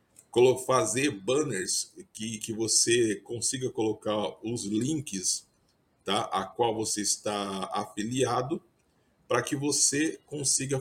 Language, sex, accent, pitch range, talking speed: English, male, Brazilian, 115-165 Hz, 100 wpm